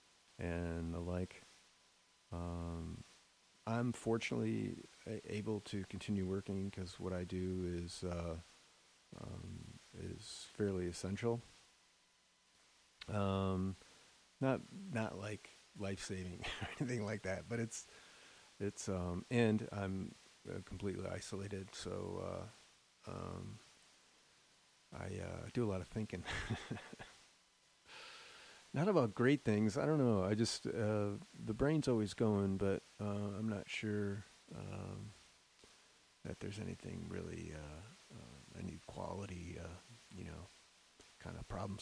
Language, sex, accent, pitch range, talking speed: English, male, American, 90-110 Hz, 120 wpm